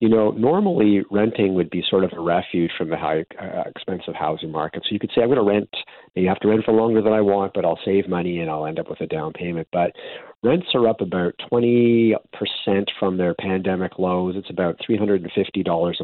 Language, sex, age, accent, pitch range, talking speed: English, male, 50-69, American, 95-115 Hz, 220 wpm